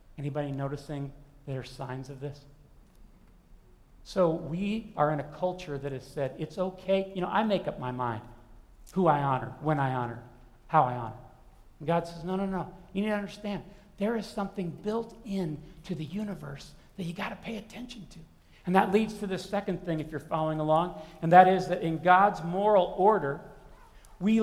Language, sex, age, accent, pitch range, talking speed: English, male, 50-69, American, 165-225 Hz, 190 wpm